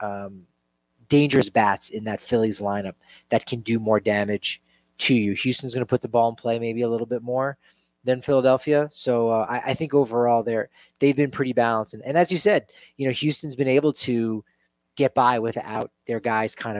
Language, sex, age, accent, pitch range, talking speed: English, male, 30-49, American, 110-135 Hz, 205 wpm